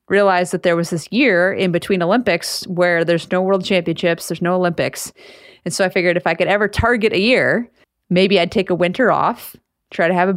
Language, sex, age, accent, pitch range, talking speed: English, female, 30-49, American, 180-215 Hz, 220 wpm